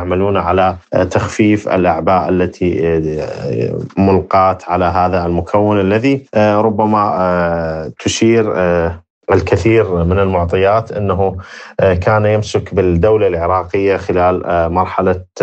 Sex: male